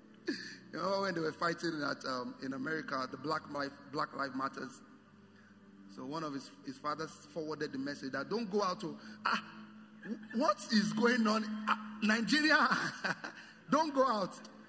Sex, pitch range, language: male, 155-235 Hz, English